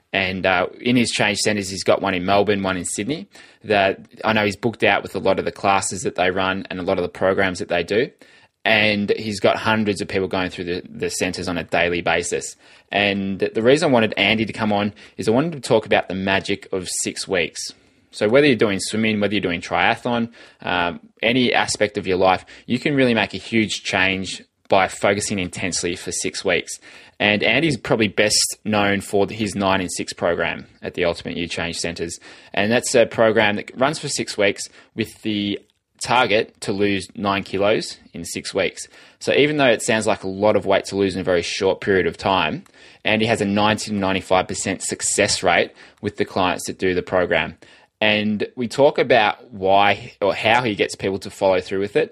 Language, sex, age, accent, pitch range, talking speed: English, male, 20-39, Australian, 95-105 Hz, 215 wpm